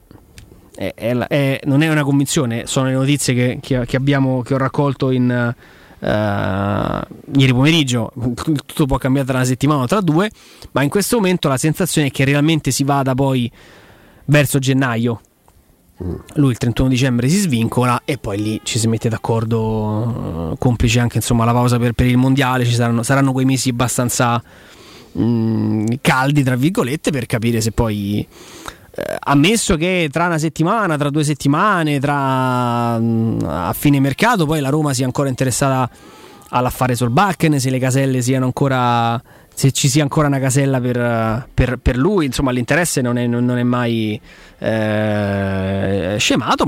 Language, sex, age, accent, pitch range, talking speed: Italian, male, 20-39, native, 120-145 Hz, 160 wpm